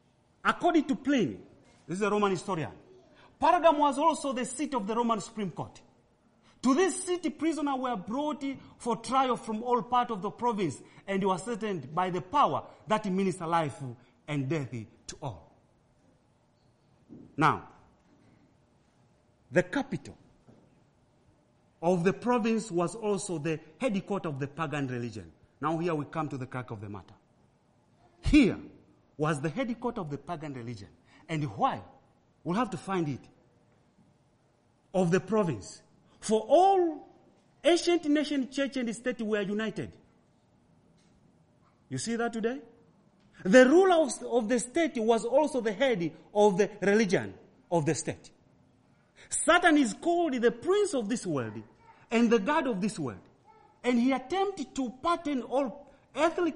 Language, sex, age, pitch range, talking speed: English, male, 40-59, 160-270 Hz, 145 wpm